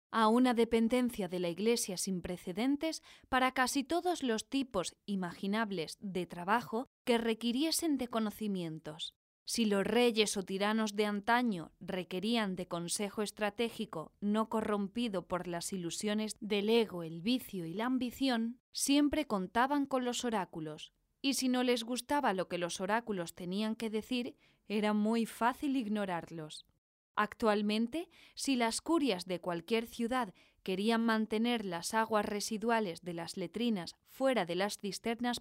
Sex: female